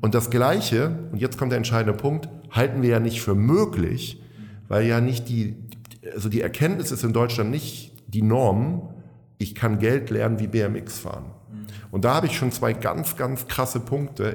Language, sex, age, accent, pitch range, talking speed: German, male, 50-69, German, 105-125 Hz, 190 wpm